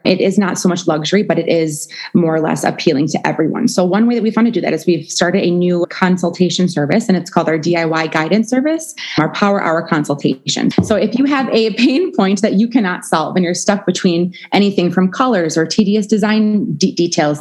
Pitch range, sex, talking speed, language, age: 170-205 Hz, female, 220 wpm, English, 20-39